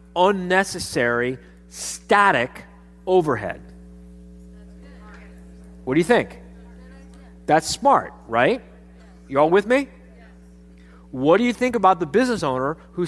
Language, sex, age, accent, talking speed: English, male, 40-59, American, 105 wpm